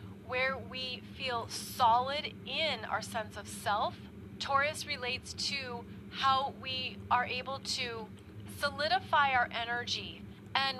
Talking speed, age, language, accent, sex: 115 wpm, 30-49, English, American, female